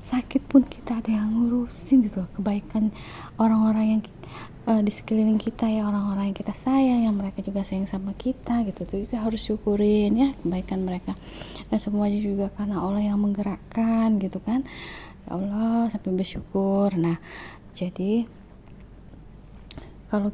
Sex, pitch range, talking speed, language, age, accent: female, 180-215 Hz, 150 wpm, Indonesian, 20-39, native